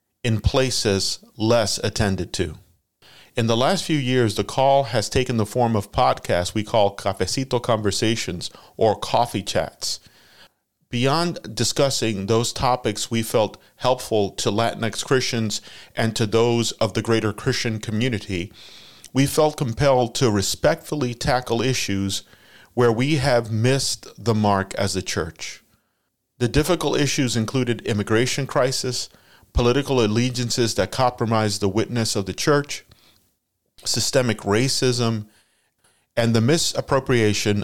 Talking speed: 125 wpm